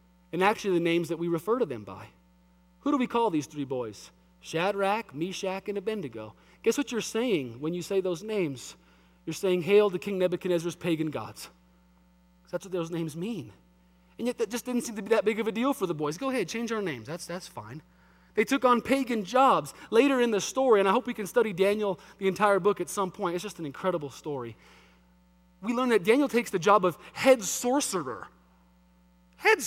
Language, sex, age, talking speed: English, male, 20-39, 210 wpm